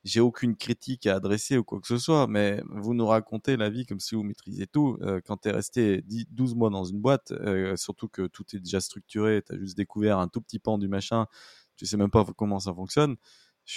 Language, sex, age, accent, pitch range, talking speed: French, male, 20-39, French, 100-115 Hz, 245 wpm